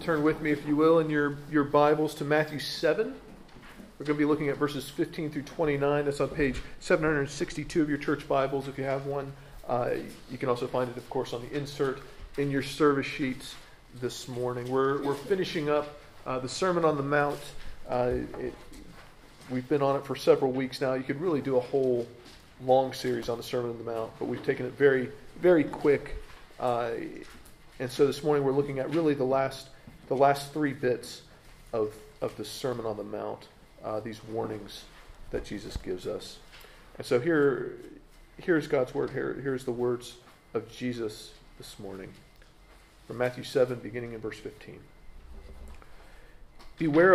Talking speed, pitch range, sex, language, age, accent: 180 wpm, 120-150 Hz, male, English, 40-59, American